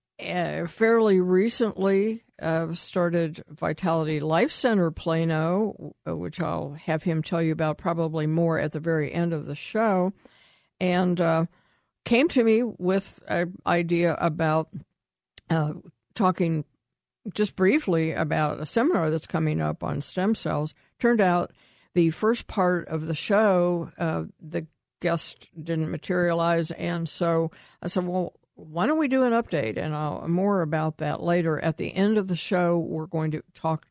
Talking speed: 155 wpm